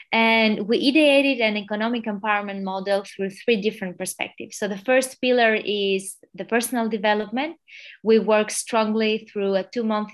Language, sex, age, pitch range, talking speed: English, female, 20-39, 190-225 Hz, 150 wpm